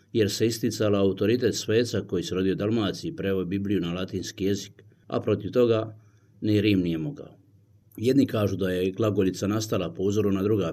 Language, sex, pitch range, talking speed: Croatian, male, 100-115 Hz, 175 wpm